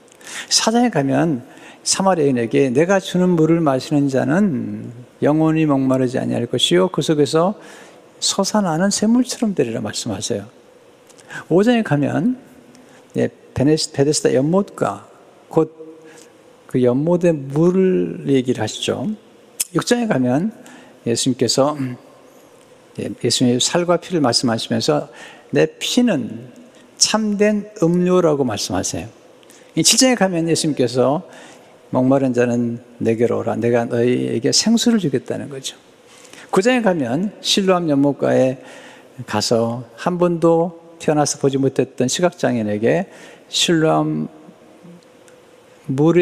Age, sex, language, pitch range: 60-79, male, Chinese, 125-190 Hz